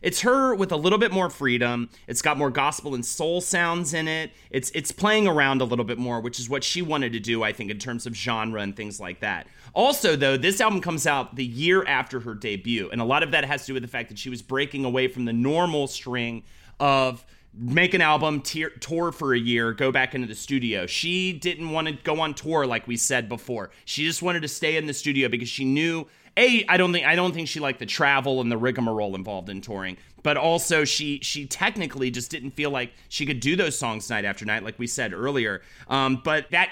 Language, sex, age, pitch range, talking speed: English, male, 30-49, 120-160 Hz, 245 wpm